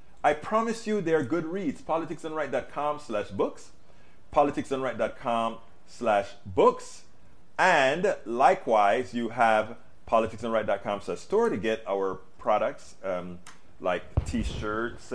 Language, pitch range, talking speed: English, 110-160 Hz, 100 wpm